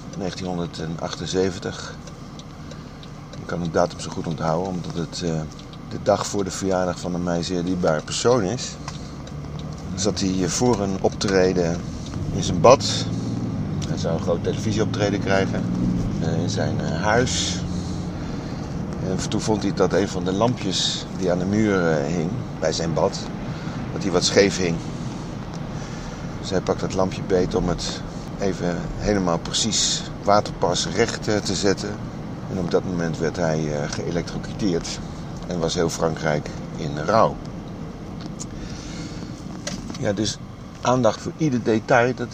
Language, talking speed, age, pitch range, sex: Dutch, 135 wpm, 50-69, 85-100 Hz, male